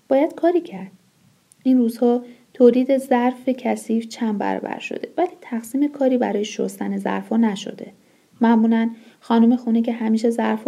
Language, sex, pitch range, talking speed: Persian, female, 225-275 Hz, 135 wpm